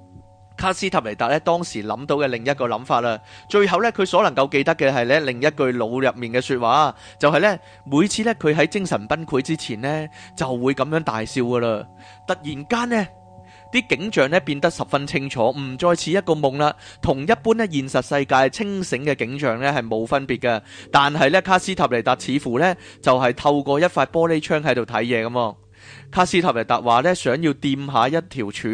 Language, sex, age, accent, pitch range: Chinese, male, 30-49, native, 120-165 Hz